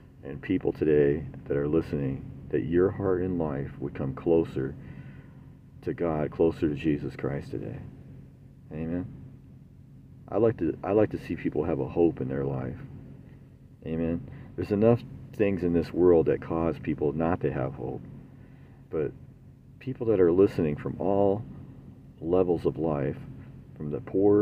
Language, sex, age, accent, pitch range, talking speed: English, male, 50-69, American, 80-110 Hz, 155 wpm